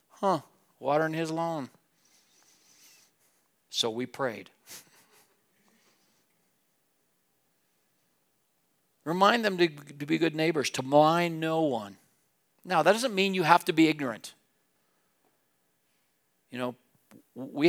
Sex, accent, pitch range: male, American, 125-160 Hz